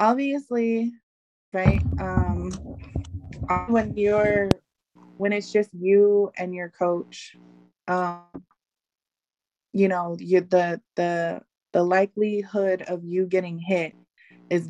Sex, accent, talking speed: female, American, 100 wpm